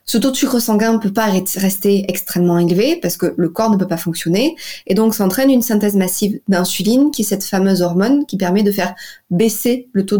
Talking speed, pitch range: 225 wpm, 185-235 Hz